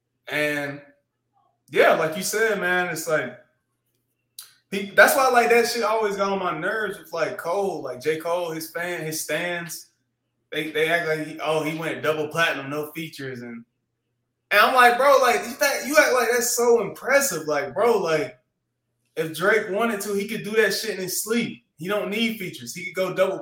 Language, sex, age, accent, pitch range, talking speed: English, male, 20-39, American, 155-210 Hz, 195 wpm